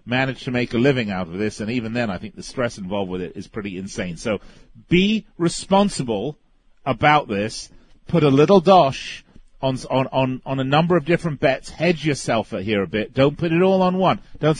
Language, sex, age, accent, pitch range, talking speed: English, male, 40-59, British, 120-175 Hz, 215 wpm